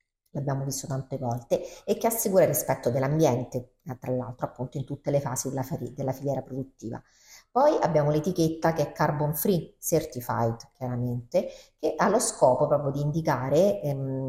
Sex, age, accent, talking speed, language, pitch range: female, 40-59, native, 155 wpm, Italian, 130-175 Hz